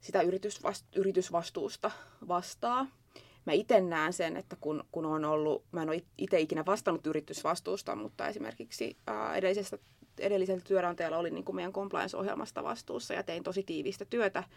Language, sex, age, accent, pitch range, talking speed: Finnish, female, 20-39, native, 165-205 Hz, 135 wpm